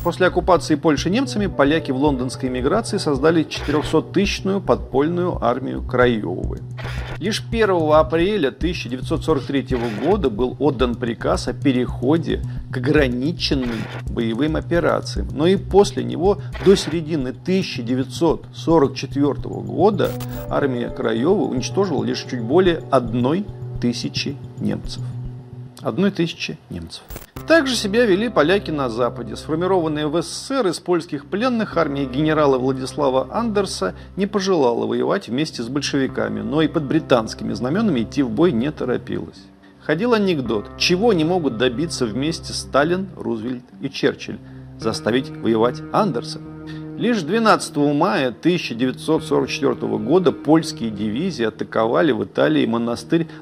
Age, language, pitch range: 40-59, Russian, 125-170 Hz